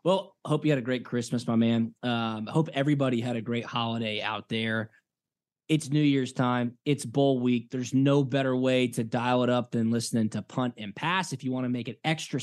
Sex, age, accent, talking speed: male, 20-39, American, 220 wpm